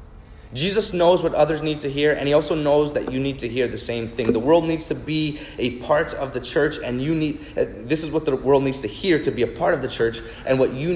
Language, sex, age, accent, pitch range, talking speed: English, male, 30-49, American, 110-145 Hz, 275 wpm